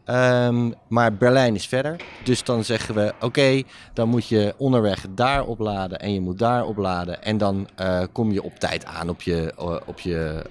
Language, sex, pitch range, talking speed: Dutch, male, 95-115 Hz, 200 wpm